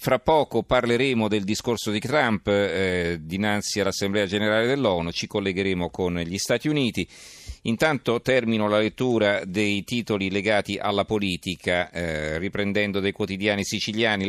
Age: 40-59